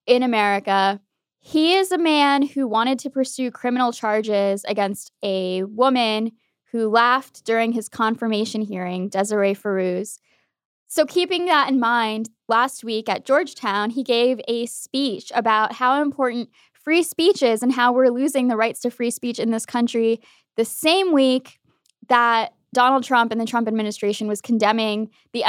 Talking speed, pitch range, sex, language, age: 160 wpm, 210-260 Hz, female, English, 20-39